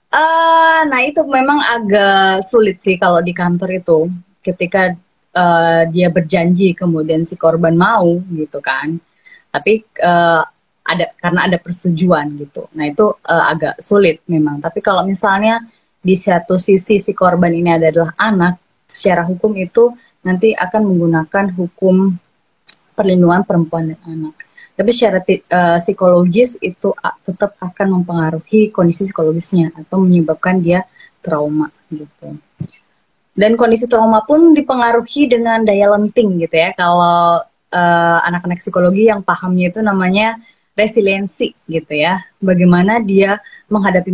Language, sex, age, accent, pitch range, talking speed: Indonesian, female, 20-39, native, 170-210 Hz, 130 wpm